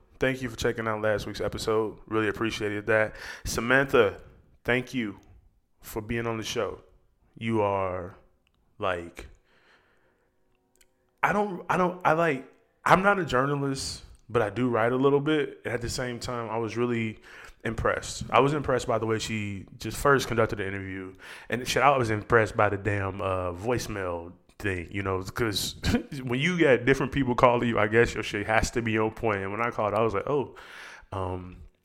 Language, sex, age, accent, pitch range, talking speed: English, male, 20-39, American, 100-120 Hz, 185 wpm